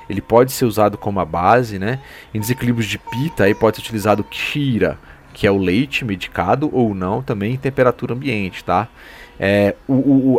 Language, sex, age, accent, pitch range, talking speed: Portuguese, male, 30-49, Brazilian, 105-130 Hz, 185 wpm